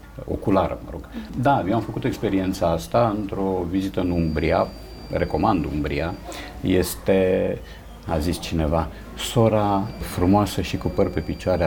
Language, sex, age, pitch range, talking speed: Romanian, male, 50-69, 85-130 Hz, 135 wpm